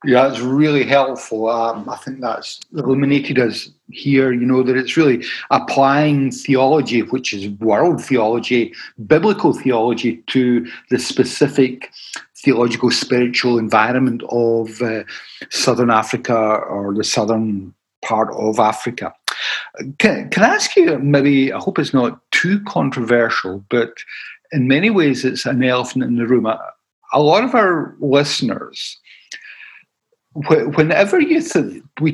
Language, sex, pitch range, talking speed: English, male, 120-150 Hz, 130 wpm